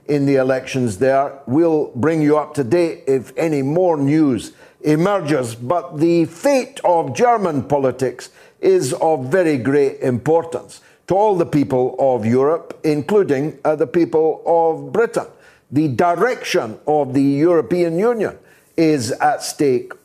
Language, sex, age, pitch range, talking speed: English, male, 60-79, 140-180 Hz, 140 wpm